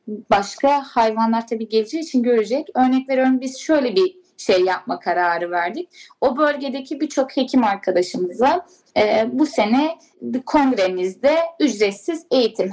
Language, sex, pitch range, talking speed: Turkish, female, 235-280 Hz, 125 wpm